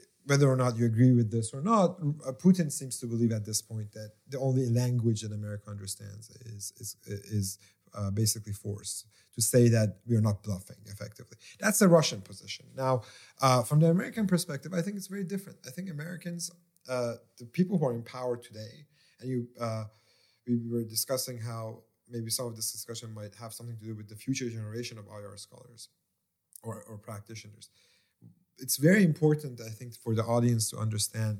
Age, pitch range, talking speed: 30-49, 110-140 Hz, 190 wpm